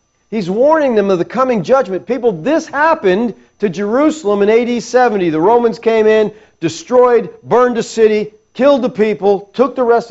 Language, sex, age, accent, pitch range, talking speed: English, male, 50-69, American, 160-230 Hz, 170 wpm